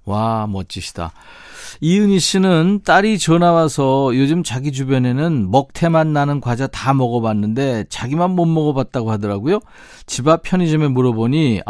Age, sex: 40-59, male